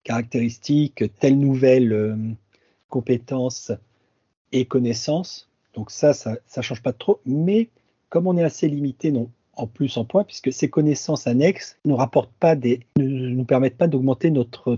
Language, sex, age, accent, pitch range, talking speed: French, male, 40-59, French, 115-145 Hz, 150 wpm